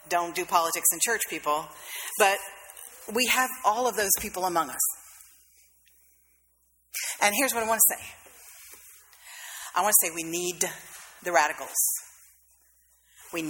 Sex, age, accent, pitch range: female, 40-59, American, 175-225 Hz